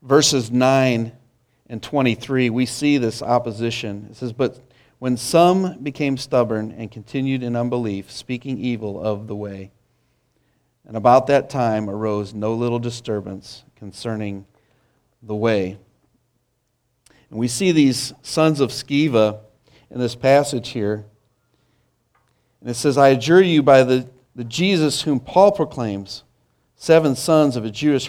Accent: American